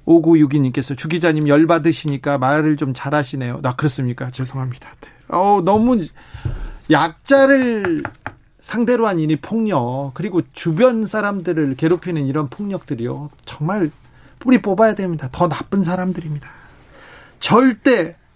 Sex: male